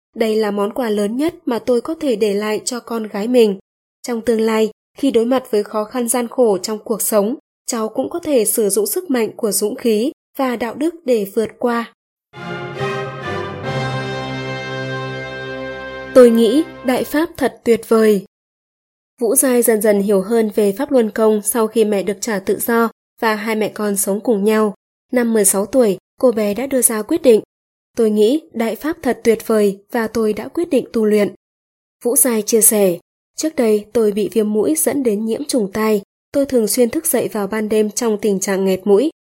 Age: 20-39